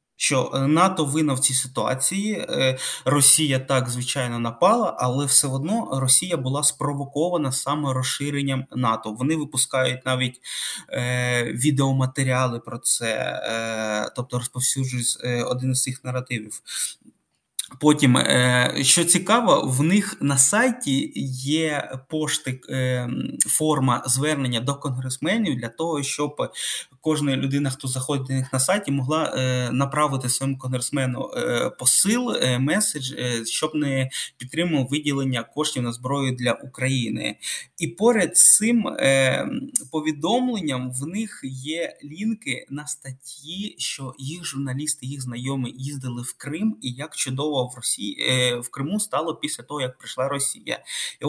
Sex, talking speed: male, 130 wpm